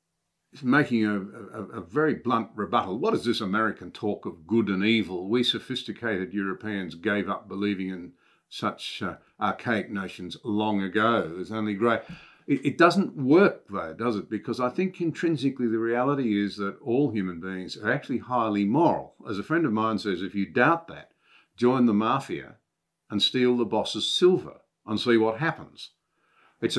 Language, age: English, 50-69